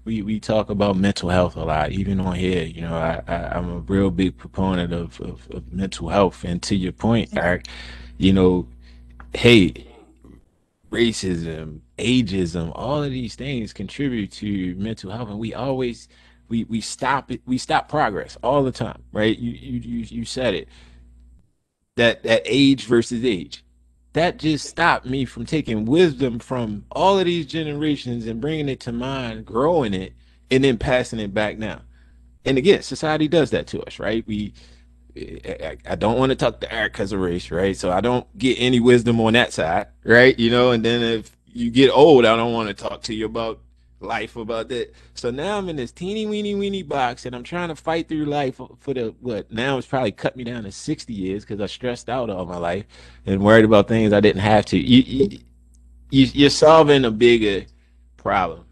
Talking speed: 195 wpm